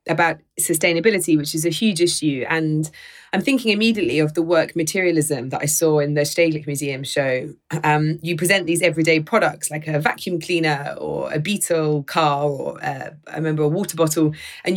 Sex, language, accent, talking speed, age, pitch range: female, English, British, 185 wpm, 20-39, 150-175 Hz